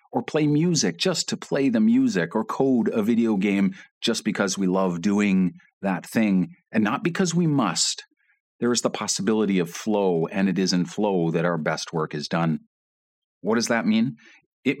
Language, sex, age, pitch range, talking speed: English, male, 40-59, 95-155 Hz, 190 wpm